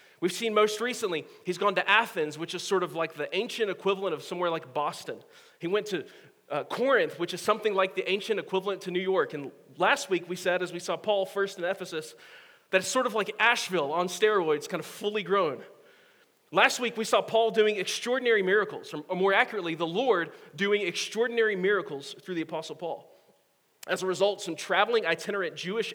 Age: 30-49